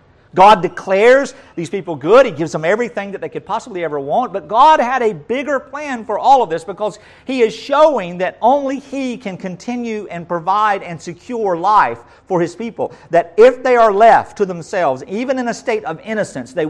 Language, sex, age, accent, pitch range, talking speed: English, male, 50-69, American, 125-210 Hz, 200 wpm